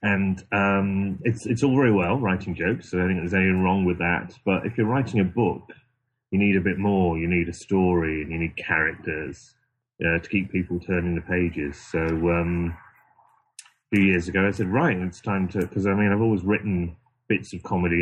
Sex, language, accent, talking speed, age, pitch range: male, English, British, 215 wpm, 30-49, 85-100 Hz